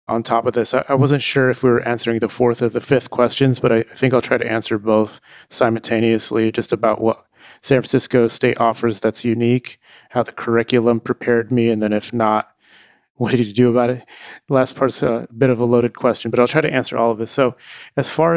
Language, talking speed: English, 230 wpm